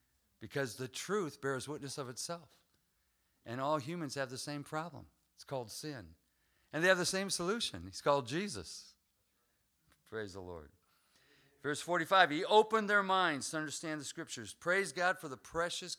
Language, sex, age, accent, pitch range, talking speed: English, male, 50-69, American, 105-150 Hz, 165 wpm